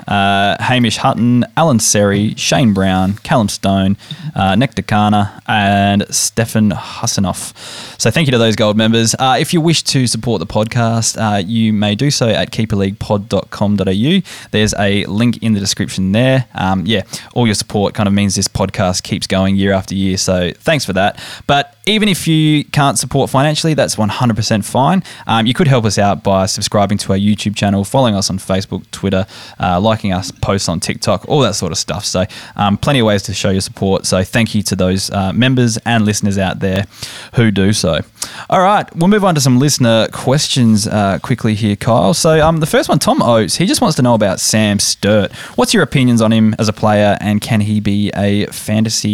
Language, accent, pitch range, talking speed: English, Australian, 100-120 Hz, 200 wpm